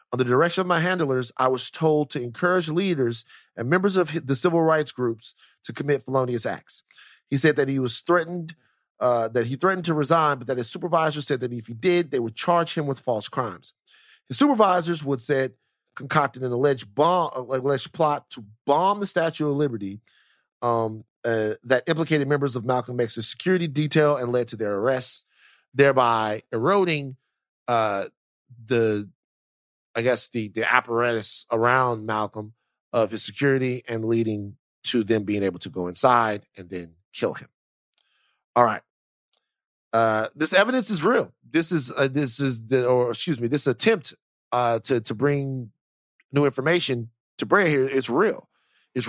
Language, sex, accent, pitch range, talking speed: English, male, American, 115-155 Hz, 170 wpm